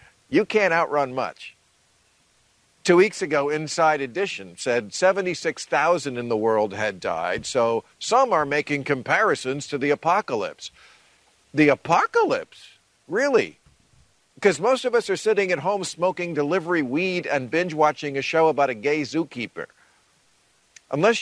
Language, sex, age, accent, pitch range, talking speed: English, male, 50-69, American, 135-185 Hz, 135 wpm